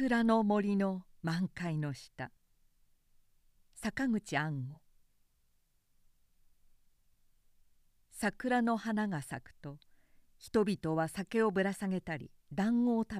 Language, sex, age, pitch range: Japanese, female, 50-69, 145-215 Hz